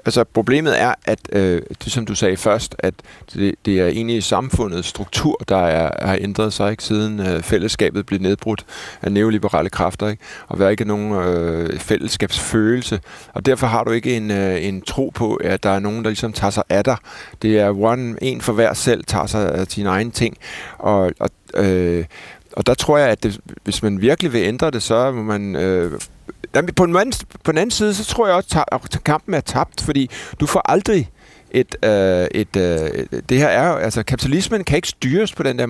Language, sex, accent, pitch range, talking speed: Danish, male, native, 105-140 Hz, 185 wpm